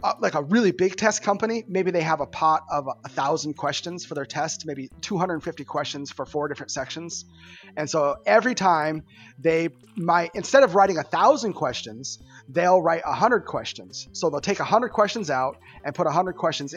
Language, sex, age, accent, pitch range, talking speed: English, male, 30-49, American, 135-185 Hz, 200 wpm